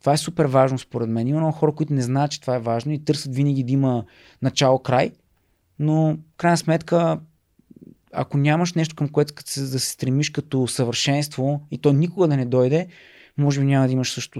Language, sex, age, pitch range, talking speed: Bulgarian, male, 20-39, 120-150 Hz, 200 wpm